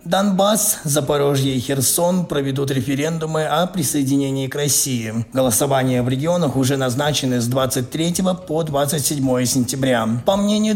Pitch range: 130-155 Hz